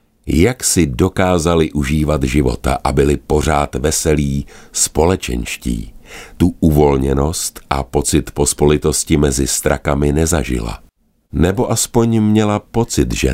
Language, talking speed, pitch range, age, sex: Czech, 105 wpm, 70-90 Hz, 50-69, male